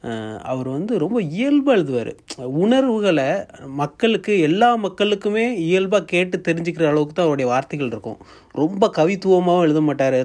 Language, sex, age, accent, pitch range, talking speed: Tamil, male, 30-49, native, 125-175 Hz, 125 wpm